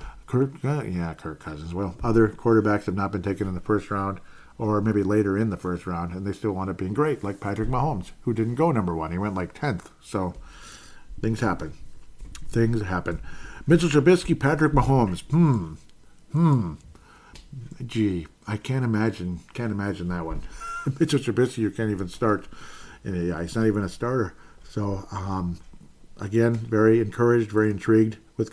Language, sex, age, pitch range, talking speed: English, male, 50-69, 90-120 Hz, 165 wpm